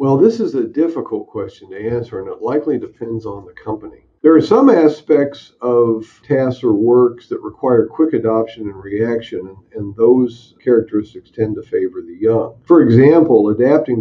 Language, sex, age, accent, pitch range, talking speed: English, male, 50-69, American, 110-160 Hz, 170 wpm